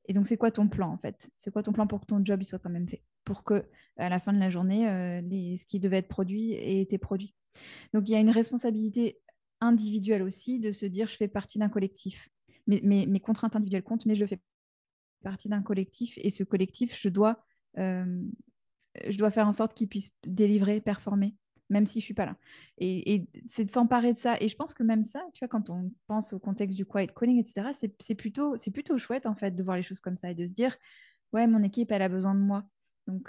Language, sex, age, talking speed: French, female, 20-39, 250 wpm